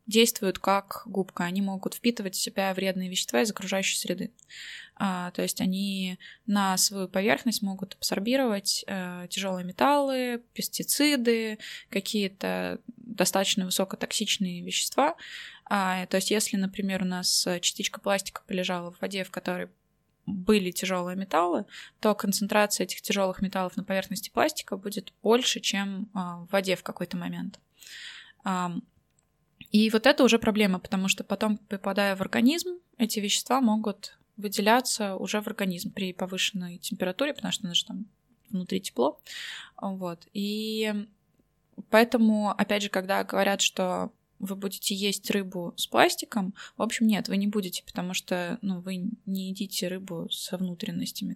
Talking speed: 135 wpm